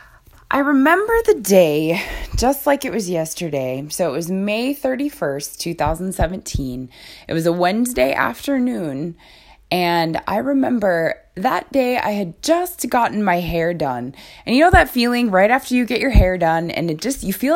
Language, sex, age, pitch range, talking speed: English, female, 20-39, 165-260 Hz, 170 wpm